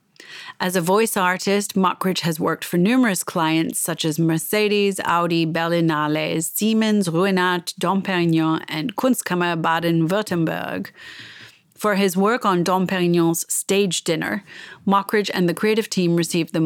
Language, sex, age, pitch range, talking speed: English, female, 30-49, 170-200 Hz, 135 wpm